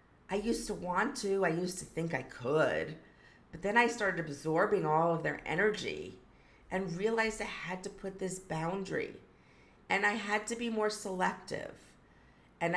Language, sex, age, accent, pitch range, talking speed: English, female, 40-59, American, 155-195 Hz, 170 wpm